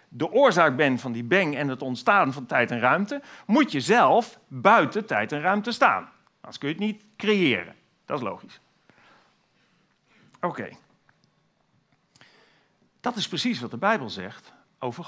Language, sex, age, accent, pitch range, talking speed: Dutch, male, 50-69, Dutch, 135-200 Hz, 155 wpm